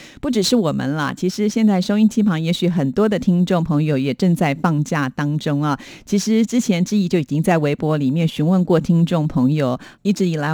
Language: Chinese